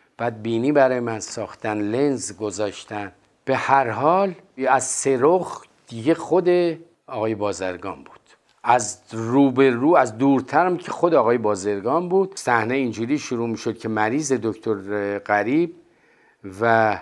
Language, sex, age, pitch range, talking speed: Persian, male, 50-69, 110-155 Hz, 130 wpm